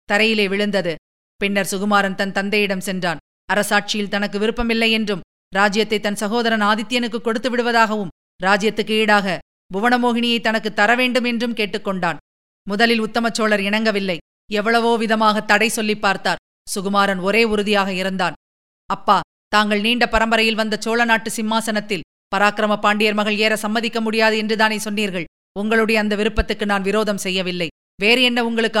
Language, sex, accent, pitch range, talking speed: Tamil, female, native, 200-225 Hz, 125 wpm